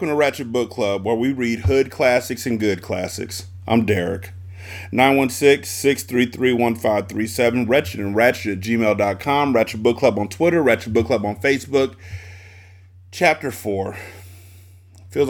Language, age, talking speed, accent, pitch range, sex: English, 30-49, 135 wpm, American, 95-140 Hz, male